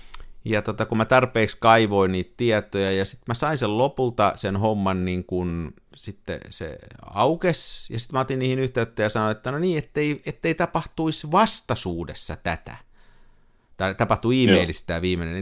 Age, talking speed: 50-69, 160 wpm